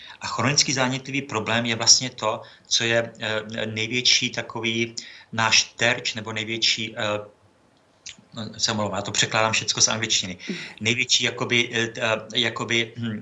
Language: Czech